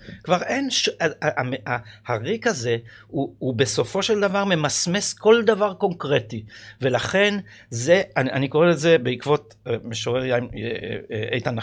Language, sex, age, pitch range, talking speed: Hebrew, male, 50-69, 120-170 Hz, 115 wpm